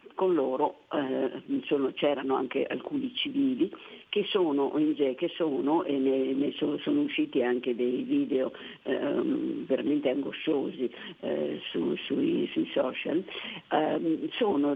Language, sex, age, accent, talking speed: Italian, female, 50-69, native, 120 wpm